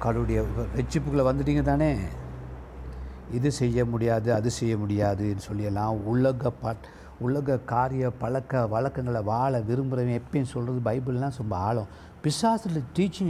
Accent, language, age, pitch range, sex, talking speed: native, Tamil, 60-79, 115-165 Hz, male, 115 wpm